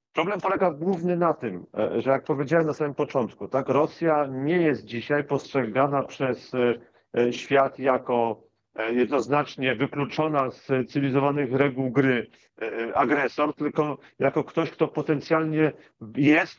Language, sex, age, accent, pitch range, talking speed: Polish, male, 50-69, native, 135-150 Hz, 120 wpm